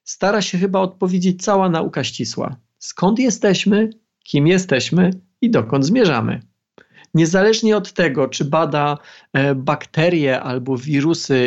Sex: male